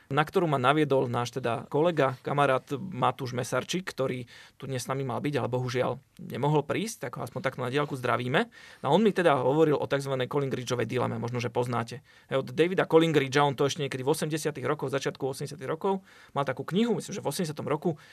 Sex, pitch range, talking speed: male, 135-175 Hz, 210 wpm